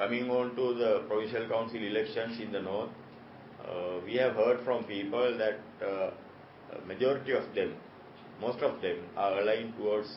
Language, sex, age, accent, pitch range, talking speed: English, male, 50-69, Indian, 105-120 Hz, 160 wpm